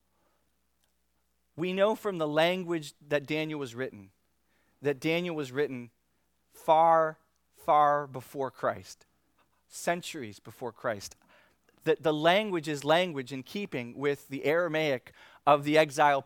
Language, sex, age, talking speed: English, male, 30-49, 120 wpm